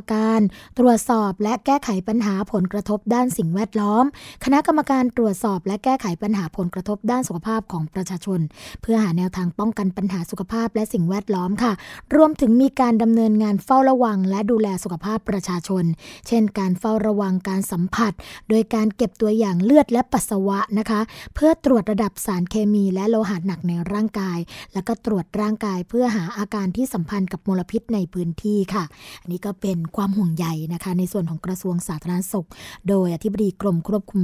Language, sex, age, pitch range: Thai, female, 20-39, 185-225 Hz